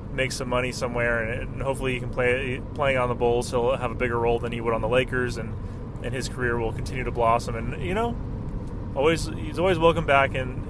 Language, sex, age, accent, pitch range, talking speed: English, male, 20-39, American, 115-135 Hz, 230 wpm